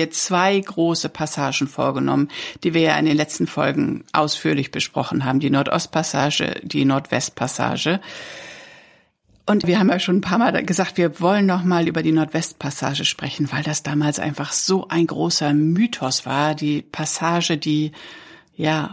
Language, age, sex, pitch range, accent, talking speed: German, 60-79, female, 155-200 Hz, German, 150 wpm